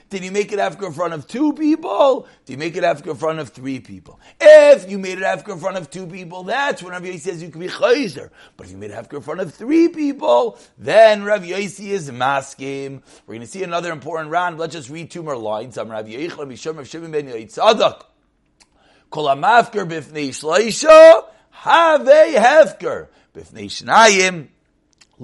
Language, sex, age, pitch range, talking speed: English, male, 30-49, 150-205 Hz, 165 wpm